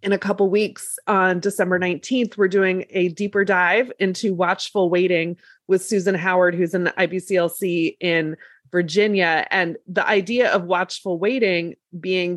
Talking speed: 155 wpm